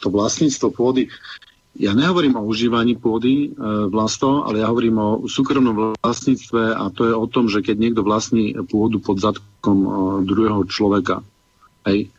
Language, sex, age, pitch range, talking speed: Slovak, male, 50-69, 100-120 Hz, 160 wpm